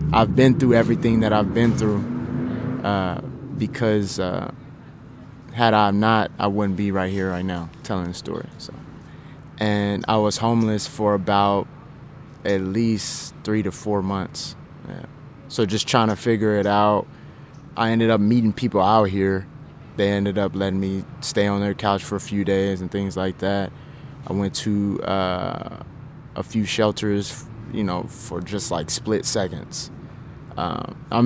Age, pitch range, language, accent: 20-39, 100-115 Hz, English, American